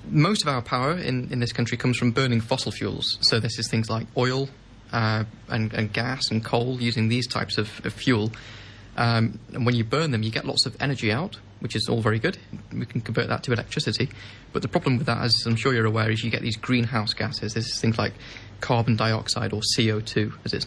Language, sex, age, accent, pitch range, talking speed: English, male, 20-39, British, 110-130 Hz, 230 wpm